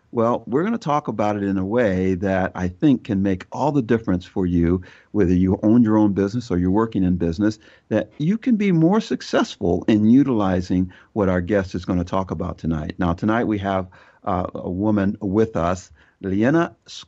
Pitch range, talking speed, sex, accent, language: 95-135 Hz, 200 wpm, male, American, English